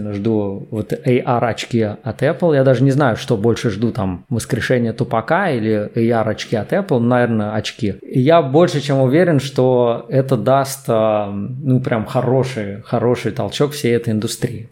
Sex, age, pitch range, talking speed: male, 20-39, 110-135 Hz, 145 wpm